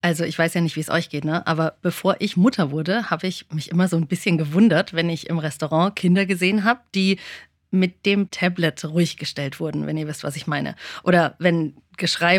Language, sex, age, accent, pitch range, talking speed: German, female, 30-49, German, 165-205 Hz, 225 wpm